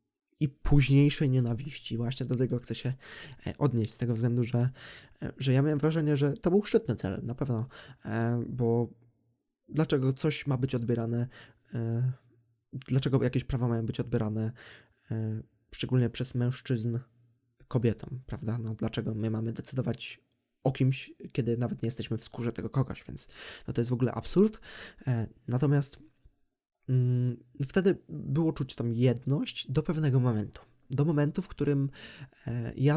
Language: Polish